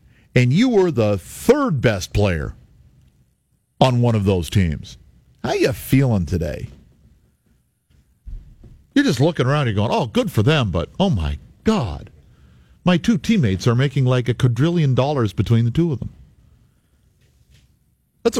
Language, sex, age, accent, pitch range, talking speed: English, male, 50-69, American, 90-140 Hz, 150 wpm